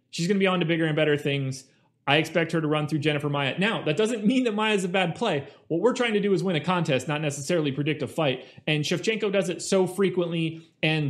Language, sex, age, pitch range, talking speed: English, male, 30-49, 145-190 Hz, 260 wpm